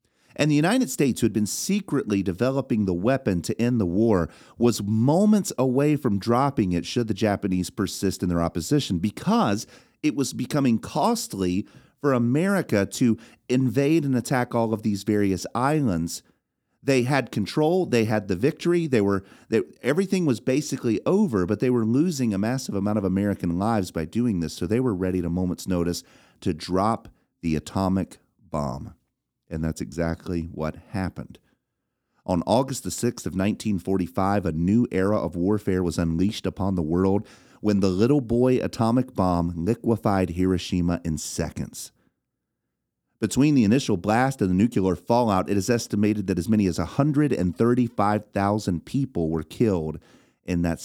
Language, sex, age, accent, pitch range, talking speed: English, male, 40-59, American, 90-125 Hz, 160 wpm